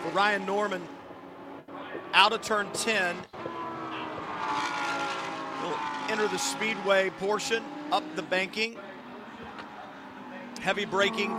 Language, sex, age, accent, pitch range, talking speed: English, male, 40-59, American, 205-260 Hz, 85 wpm